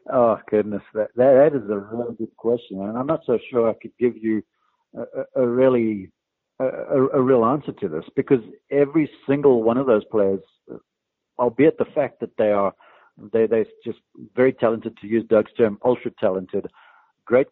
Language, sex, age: English, male, 60-79